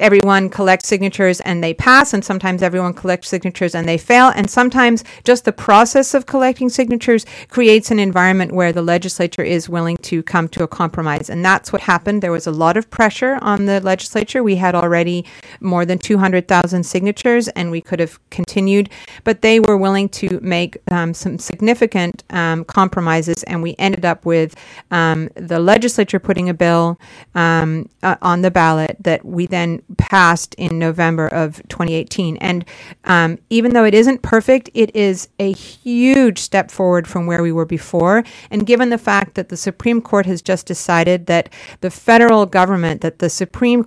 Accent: American